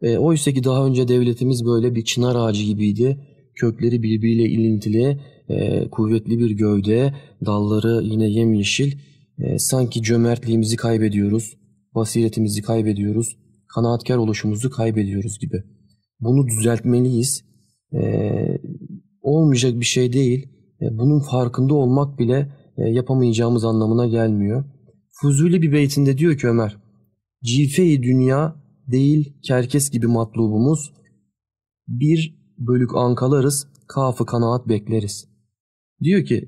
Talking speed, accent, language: 100 wpm, native, Turkish